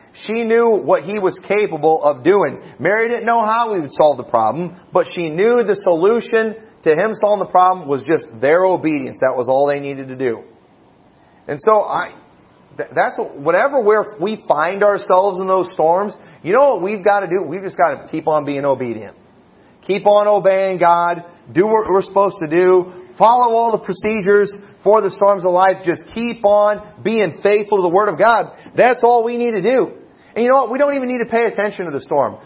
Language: English